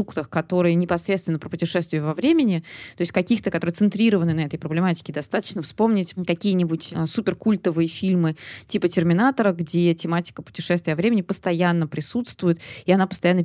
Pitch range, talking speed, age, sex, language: 165-200 Hz, 145 wpm, 20-39, female, Russian